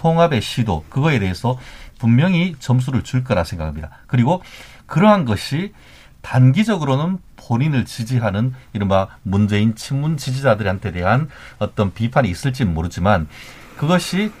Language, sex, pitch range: Korean, male, 105-155 Hz